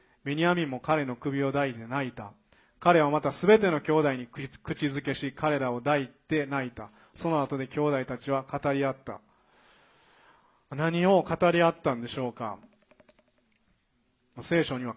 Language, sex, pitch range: Japanese, male, 125-165 Hz